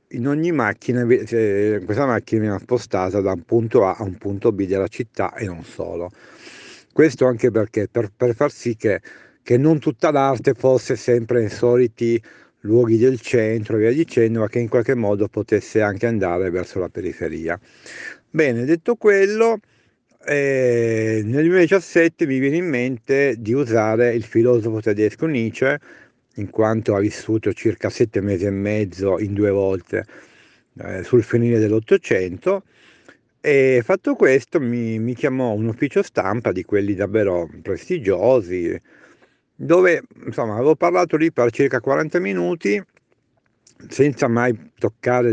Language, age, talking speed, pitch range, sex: Italian, 50-69, 145 wpm, 105-140 Hz, male